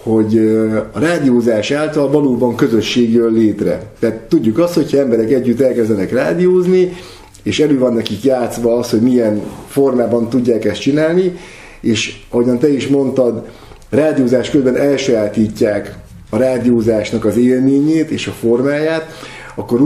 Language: Hungarian